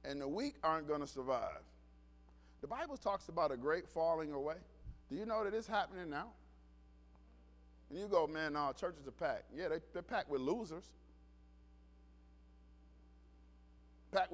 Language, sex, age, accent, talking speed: English, male, 50-69, American, 150 wpm